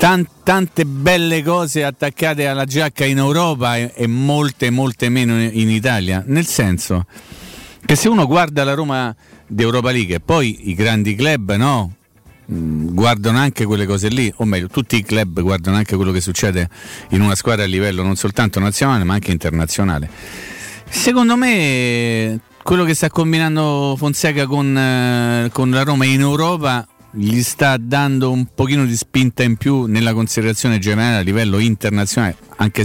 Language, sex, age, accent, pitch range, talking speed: Italian, male, 40-59, native, 105-140 Hz, 155 wpm